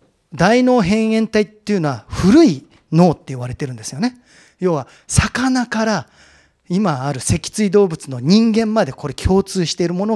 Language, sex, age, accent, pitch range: Japanese, male, 40-59, native, 140-225 Hz